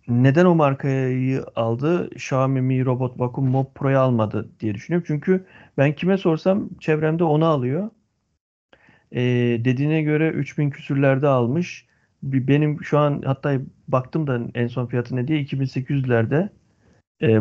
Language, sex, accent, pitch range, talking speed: Turkish, male, native, 125-145 Hz, 135 wpm